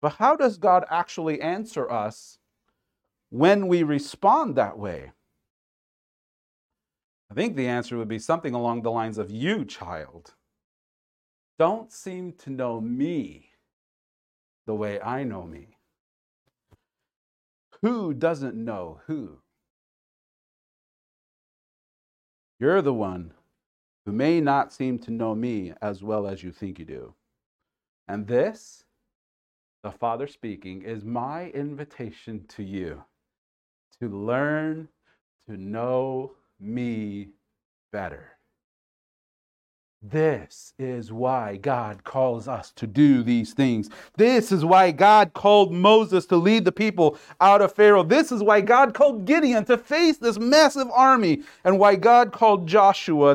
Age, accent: 40-59, American